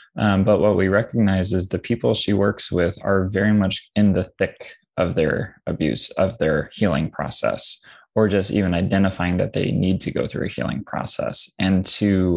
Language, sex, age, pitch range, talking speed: English, male, 20-39, 90-100 Hz, 190 wpm